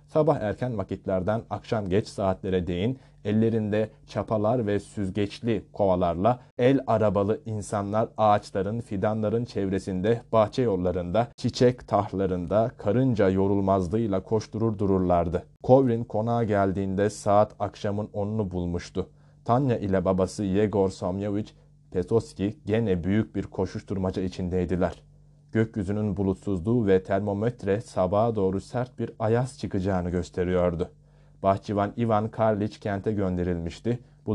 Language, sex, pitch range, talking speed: Turkish, male, 95-115 Hz, 105 wpm